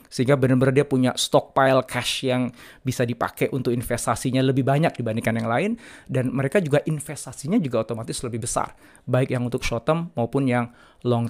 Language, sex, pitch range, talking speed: Indonesian, male, 120-150 Hz, 170 wpm